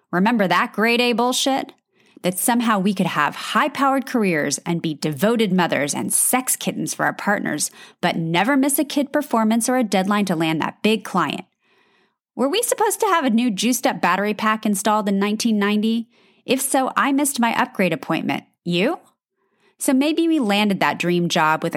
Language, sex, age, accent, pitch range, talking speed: English, female, 30-49, American, 175-250 Hz, 175 wpm